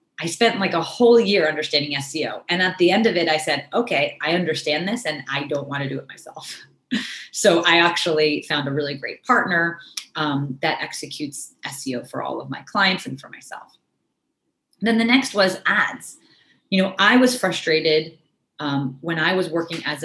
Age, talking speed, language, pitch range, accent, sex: 30-49, 195 wpm, English, 145-210 Hz, American, female